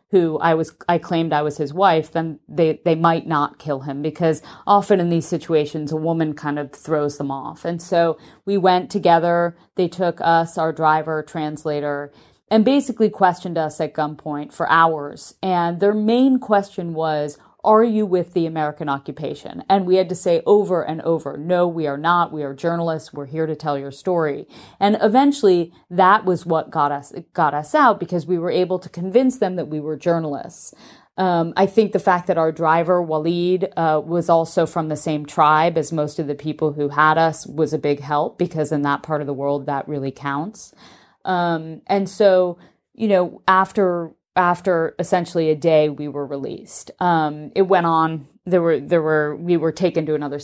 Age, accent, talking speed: 40-59, American, 195 wpm